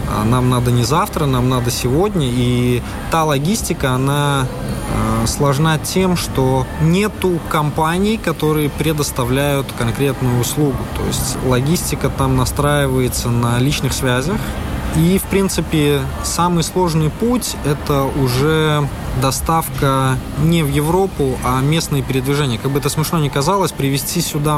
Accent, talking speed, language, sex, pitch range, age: native, 125 wpm, Russian, male, 130-165 Hz, 20-39